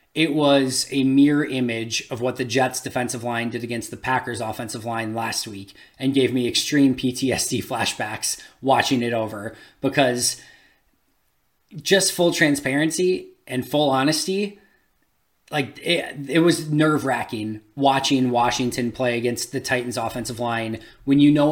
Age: 20-39